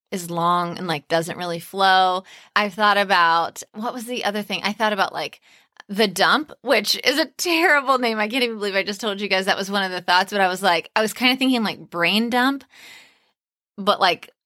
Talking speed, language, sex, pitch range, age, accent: 230 wpm, English, female, 180-225 Hz, 20-39, American